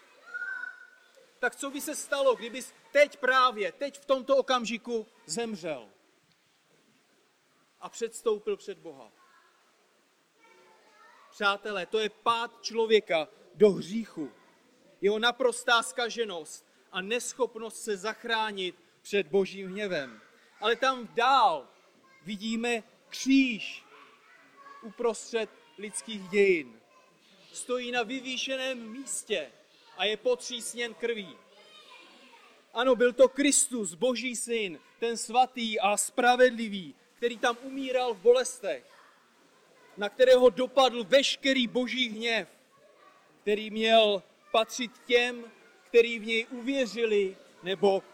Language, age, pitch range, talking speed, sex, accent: Czech, 40-59, 220-265 Hz, 100 wpm, male, native